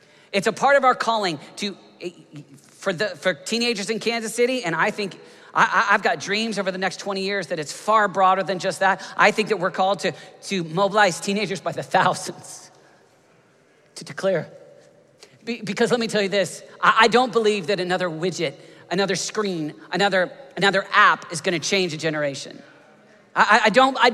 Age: 40-59